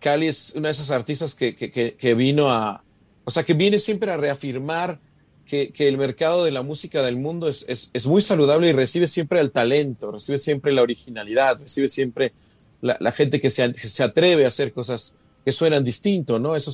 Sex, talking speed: male, 210 wpm